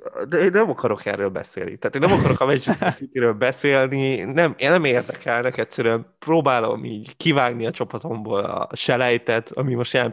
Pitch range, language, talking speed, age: 115-135 Hz, Hungarian, 170 wpm, 20-39